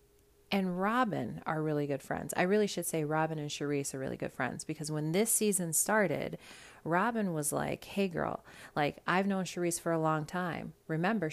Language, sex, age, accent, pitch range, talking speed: English, female, 30-49, American, 135-175 Hz, 190 wpm